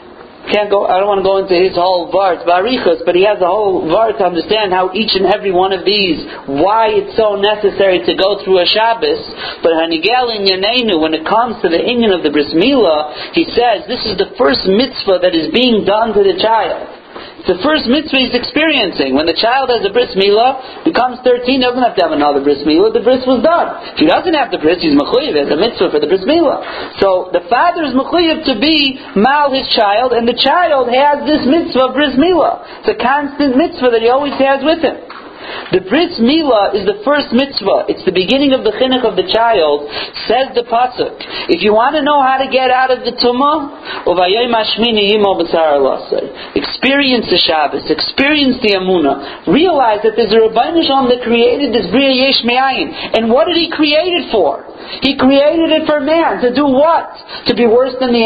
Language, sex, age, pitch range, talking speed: English, male, 50-69, 205-295 Hz, 200 wpm